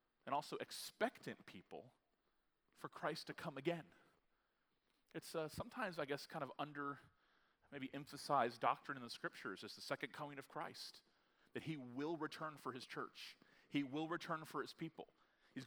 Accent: American